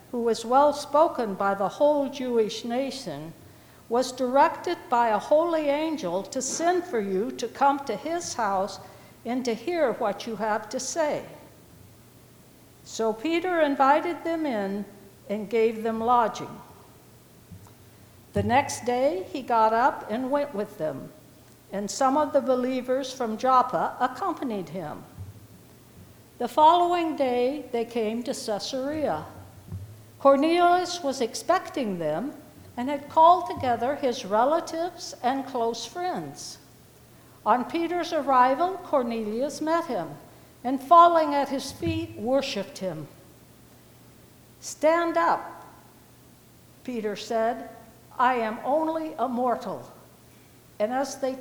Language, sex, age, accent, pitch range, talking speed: English, female, 60-79, American, 220-300 Hz, 125 wpm